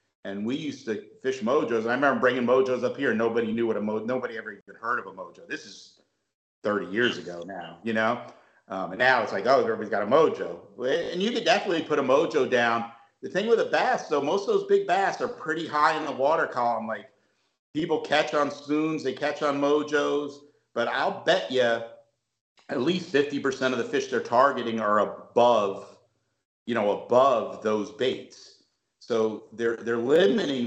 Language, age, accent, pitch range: English, 50-69, American, 110-145 Hz